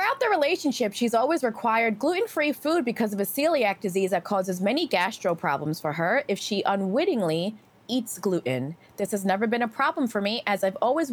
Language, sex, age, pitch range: English, female, 20-39, 185-260 Hz